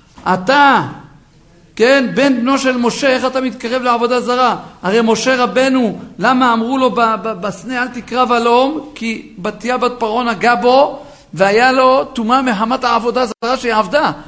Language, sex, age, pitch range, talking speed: Hebrew, male, 50-69, 190-250 Hz, 145 wpm